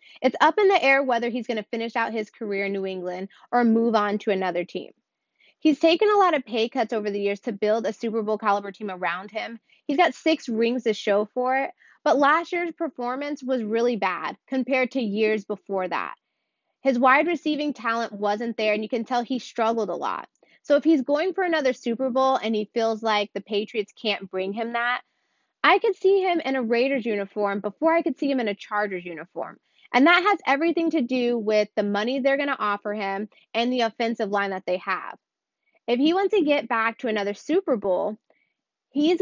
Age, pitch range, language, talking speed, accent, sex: 20-39, 205-275 Hz, English, 215 wpm, American, female